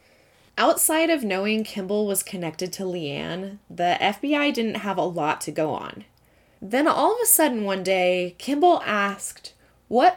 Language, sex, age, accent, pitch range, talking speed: English, female, 20-39, American, 175-225 Hz, 160 wpm